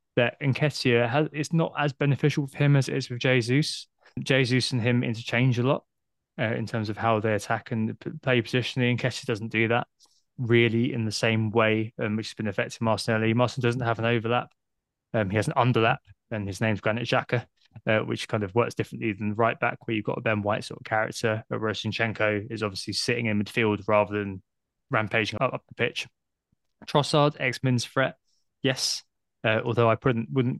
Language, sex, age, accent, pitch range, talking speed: English, male, 20-39, British, 110-130 Hz, 195 wpm